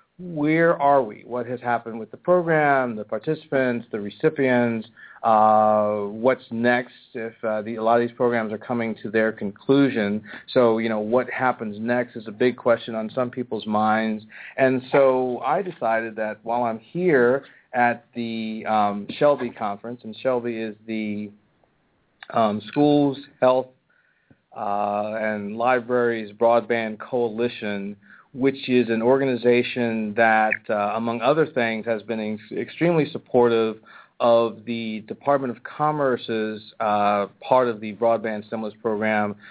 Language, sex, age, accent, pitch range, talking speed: English, male, 40-59, American, 110-125 Hz, 140 wpm